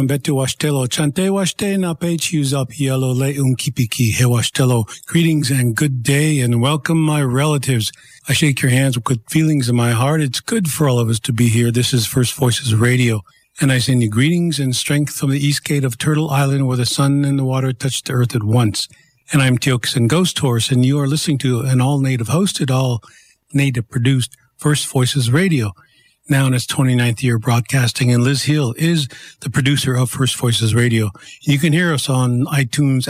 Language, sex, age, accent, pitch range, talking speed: English, male, 50-69, American, 125-150 Hz, 180 wpm